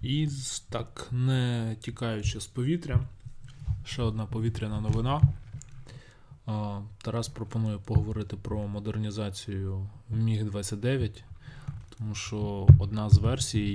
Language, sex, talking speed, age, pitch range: Ukrainian, male, 90 wpm, 20-39, 105-125 Hz